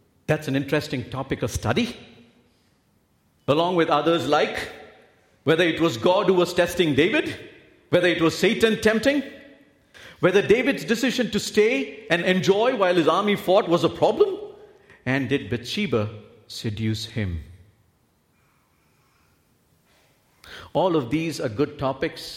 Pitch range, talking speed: 115-175 Hz, 130 wpm